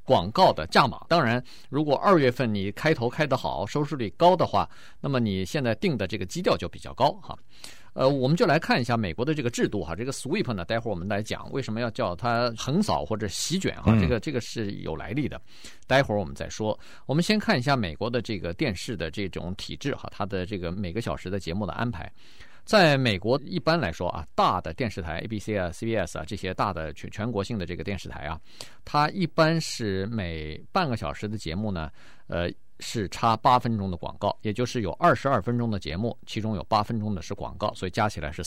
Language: Chinese